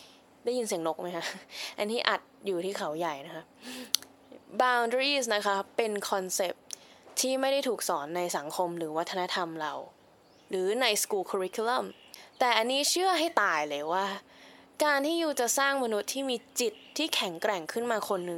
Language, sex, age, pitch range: Thai, female, 10-29, 185-255 Hz